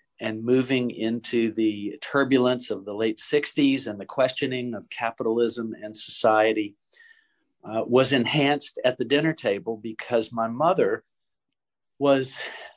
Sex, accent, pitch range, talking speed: male, American, 110-140 Hz, 125 wpm